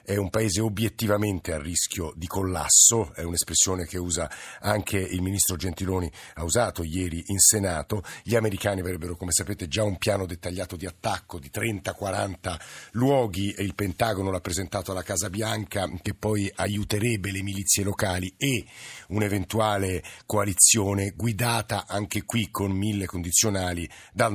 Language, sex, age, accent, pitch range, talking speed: Italian, male, 50-69, native, 90-110 Hz, 145 wpm